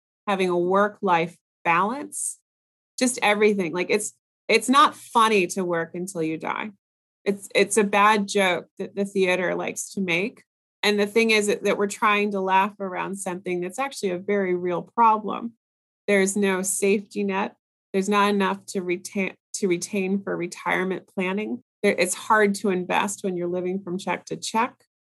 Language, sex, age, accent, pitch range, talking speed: English, female, 30-49, American, 185-210 Hz, 170 wpm